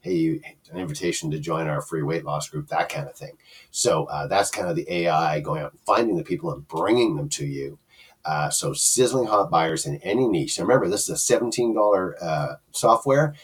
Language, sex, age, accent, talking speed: English, male, 50-69, American, 220 wpm